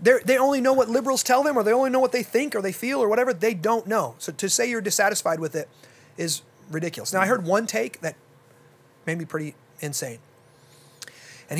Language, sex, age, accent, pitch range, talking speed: English, male, 30-49, American, 145-195 Hz, 220 wpm